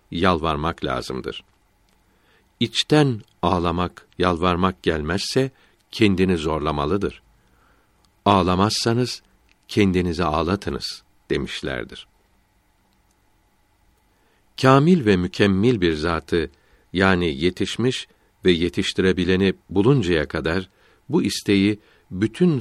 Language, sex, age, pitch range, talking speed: Turkish, male, 60-79, 90-110 Hz, 70 wpm